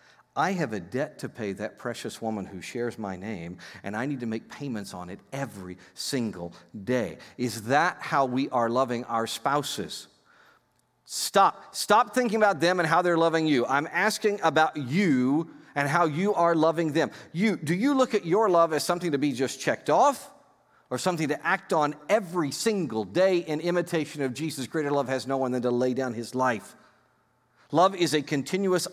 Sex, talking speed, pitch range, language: male, 195 wpm, 130-180 Hz, English